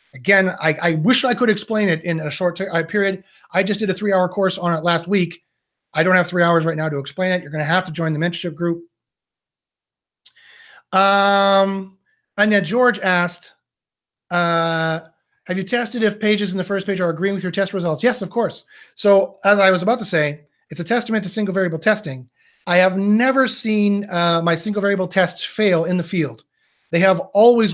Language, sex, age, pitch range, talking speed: English, male, 30-49, 170-210 Hz, 205 wpm